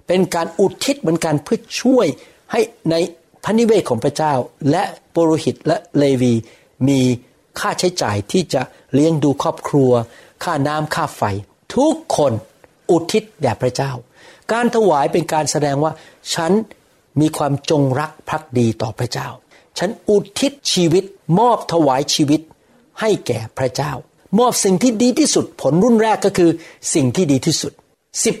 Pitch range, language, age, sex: 130-180 Hz, Thai, 60-79, male